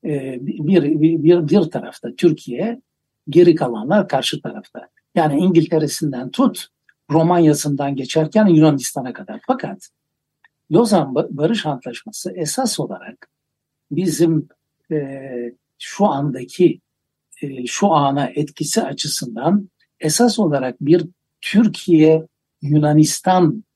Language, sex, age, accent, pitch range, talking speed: Turkish, male, 60-79, native, 140-170 Hz, 95 wpm